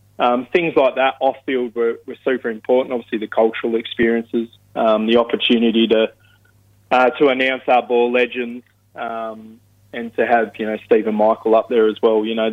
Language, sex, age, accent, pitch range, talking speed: English, male, 20-39, Australian, 110-120 Hz, 180 wpm